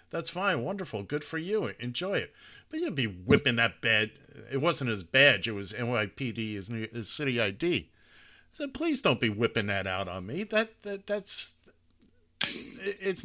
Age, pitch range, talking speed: 50-69, 110-165 Hz, 170 wpm